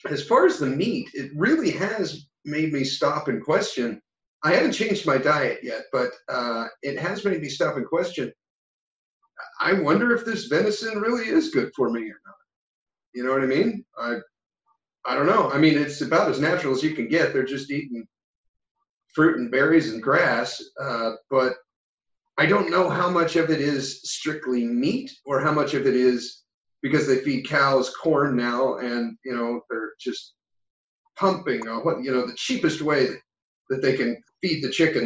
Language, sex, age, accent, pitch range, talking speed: English, male, 40-59, American, 125-180 Hz, 190 wpm